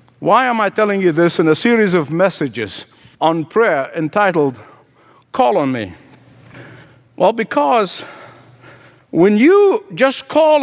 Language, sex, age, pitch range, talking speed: English, male, 60-79, 195-265 Hz, 130 wpm